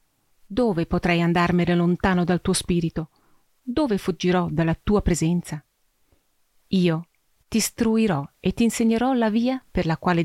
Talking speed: 135 wpm